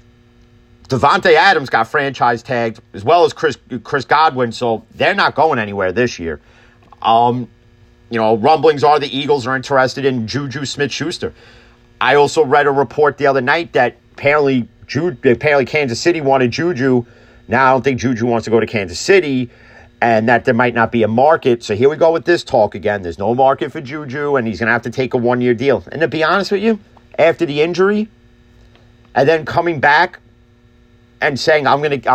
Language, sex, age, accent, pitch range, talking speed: English, male, 40-59, American, 120-145 Hz, 200 wpm